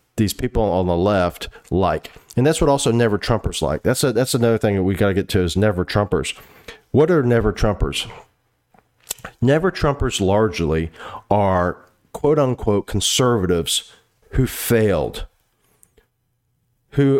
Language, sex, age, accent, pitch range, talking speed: English, male, 40-59, American, 100-125 Hz, 145 wpm